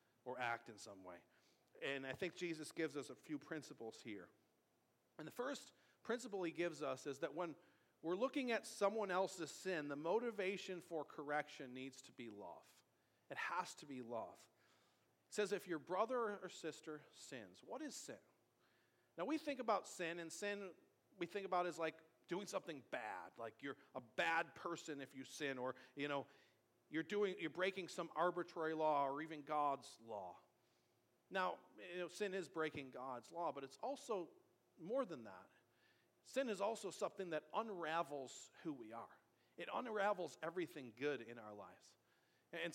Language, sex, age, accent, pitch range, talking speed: English, male, 40-59, American, 140-195 Hz, 175 wpm